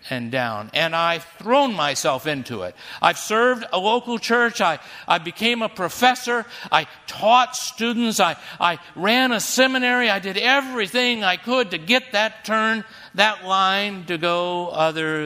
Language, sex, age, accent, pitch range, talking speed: English, male, 60-79, American, 145-195 Hz, 155 wpm